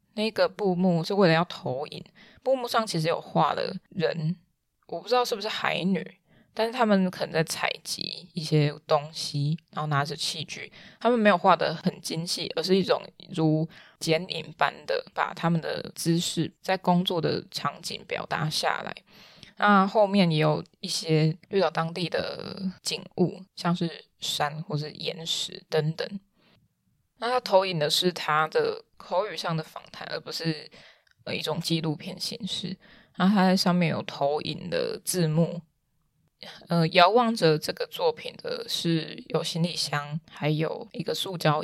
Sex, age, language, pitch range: female, 20-39, Chinese, 160-195 Hz